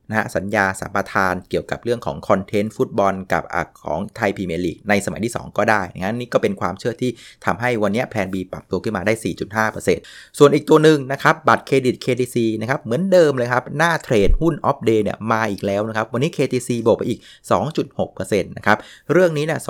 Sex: male